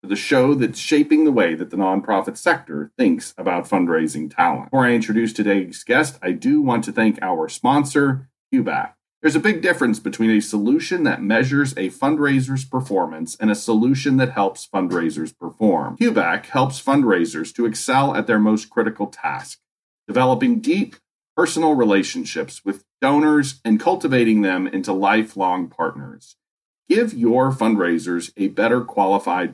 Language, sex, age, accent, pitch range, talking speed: English, male, 40-59, American, 105-145 Hz, 150 wpm